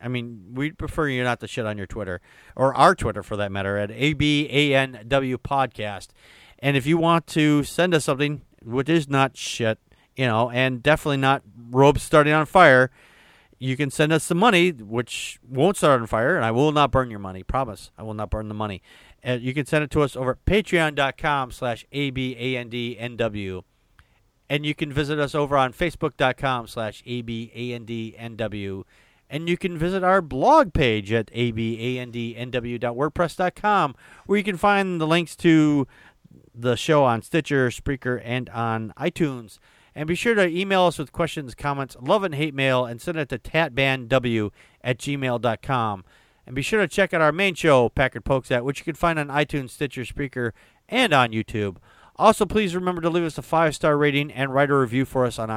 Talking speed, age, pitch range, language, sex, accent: 185 wpm, 40-59, 115-155 Hz, English, male, American